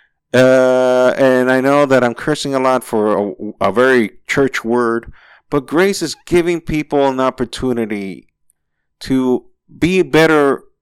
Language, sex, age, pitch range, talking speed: English, male, 50-69, 95-130 Hz, 140 wpm